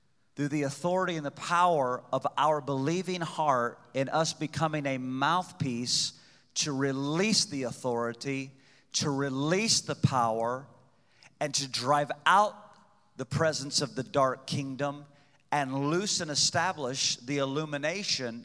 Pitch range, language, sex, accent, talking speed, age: 130-155 Hz, English, male, American, 125 wpm, 40-59